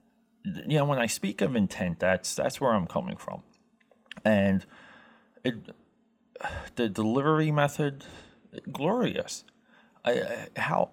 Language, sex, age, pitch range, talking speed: English, male, 30-49, 95-135 Hz, 120 wpm